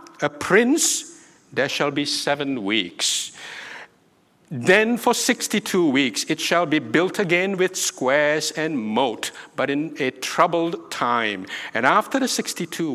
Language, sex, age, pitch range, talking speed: English, male, 60-79, 150-195 Hz, 135 wpm